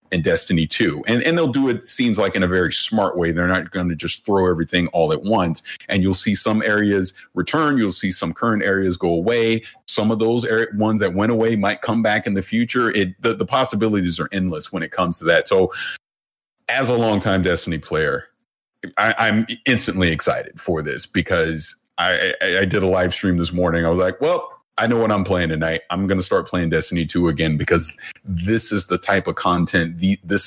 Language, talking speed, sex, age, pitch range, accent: English, 220 wpm, male, 30-49, 85-105 Hz, American